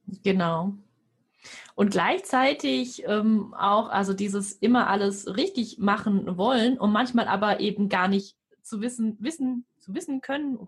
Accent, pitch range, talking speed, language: German, 195-245 Hz, 140 wpm, German